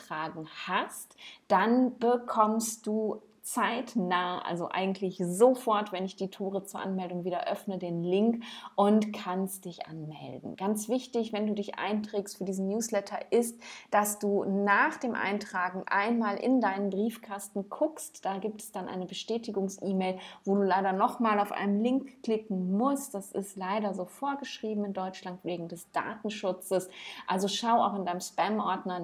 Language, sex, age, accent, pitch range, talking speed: German, female, 30-49, German, 180-210 Hz, 150 wpm